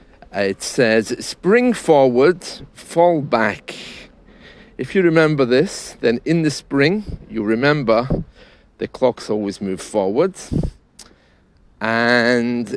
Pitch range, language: 110-150 Hz, English